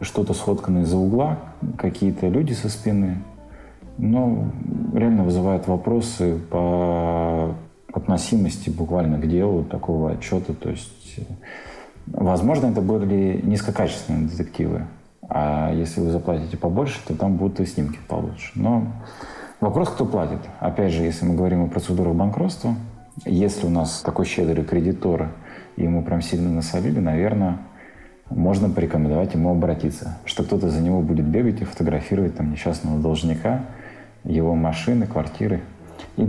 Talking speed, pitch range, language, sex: 130 wpm, 80-100 Hz, Russian, male